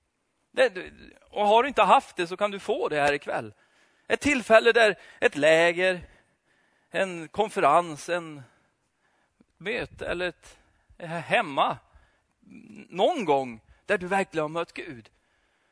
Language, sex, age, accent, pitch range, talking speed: Swedish, male, 30-49, native, 200-295 Hz, 135 wpm